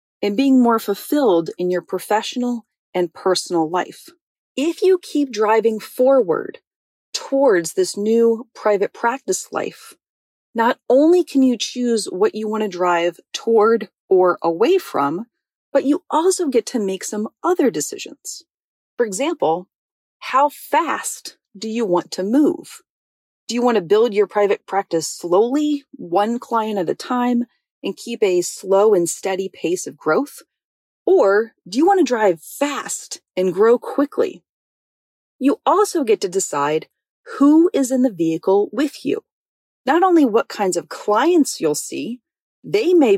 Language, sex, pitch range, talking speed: English, female, 200-315 Hz, 150 wpm